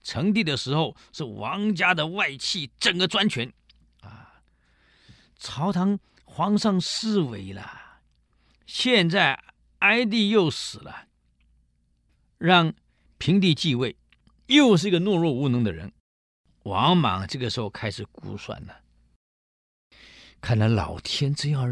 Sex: male